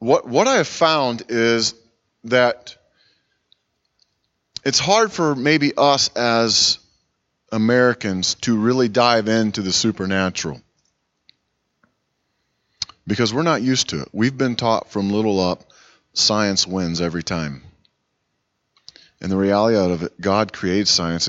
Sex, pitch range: male, 100-145 Hz